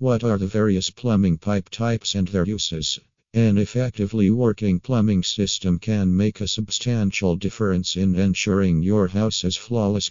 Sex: male